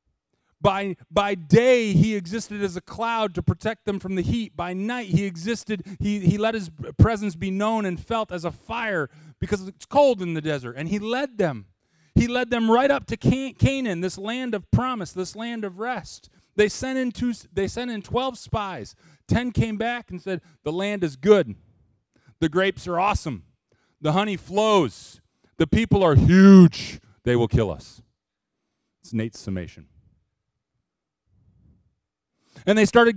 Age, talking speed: 30-49, 170 wpm